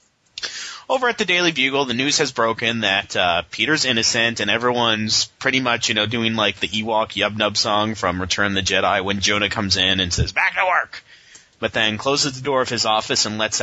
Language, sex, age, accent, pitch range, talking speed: English, male, 30-49, American, 100-125 Hz, 215 wpm